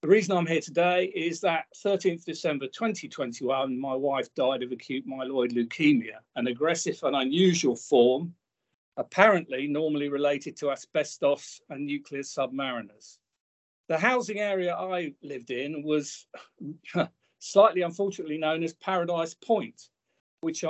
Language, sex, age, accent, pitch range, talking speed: English, male, 50-69, British, 145-180 Hz, 130 wpm